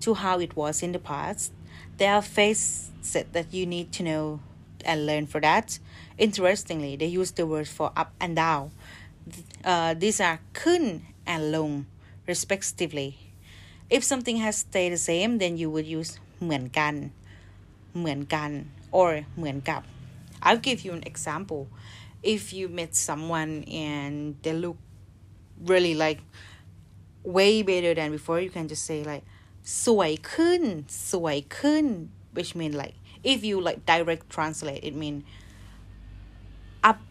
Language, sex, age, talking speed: English, female, 30-49, 140 wpm